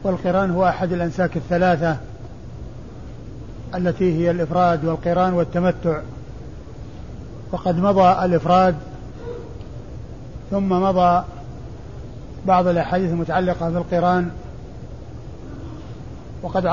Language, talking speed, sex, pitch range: Arabic, 70 wpm, male, 170-185 Hz